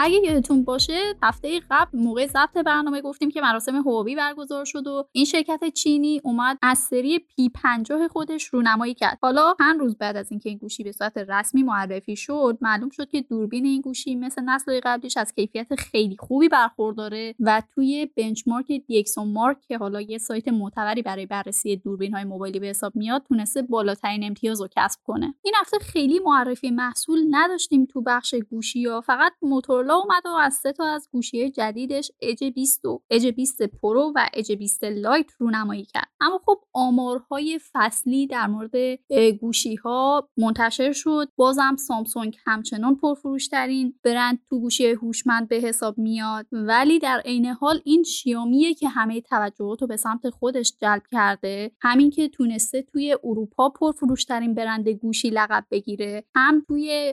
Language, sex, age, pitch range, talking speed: Persian, female, 10-29, 220-280 Hz, 165 wpm